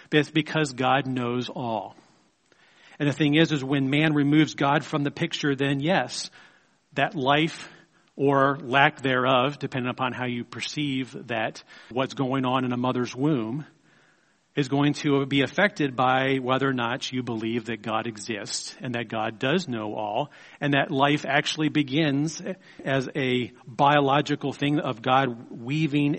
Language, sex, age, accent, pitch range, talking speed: English, male, 40-59, American, 120-145 Hz, 160 wpm